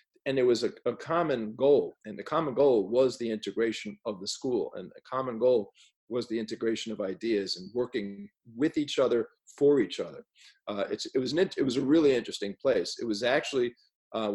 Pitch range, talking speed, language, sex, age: 110-155 Hz, 205 wpm, English, male, 40-59